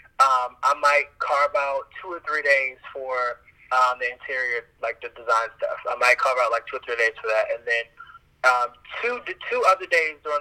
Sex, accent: male, American